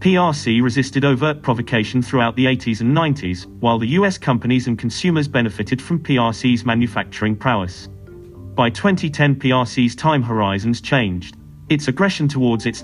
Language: English